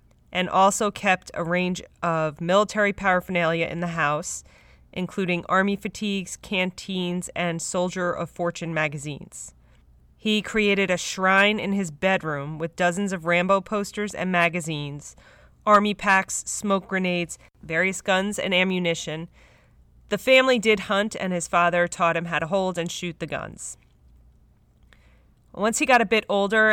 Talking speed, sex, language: 145 wpm, female, English